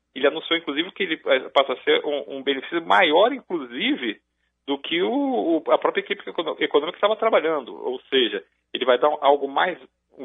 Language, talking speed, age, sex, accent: Portuguese, 175 wpm, 40-59, male, Brazilian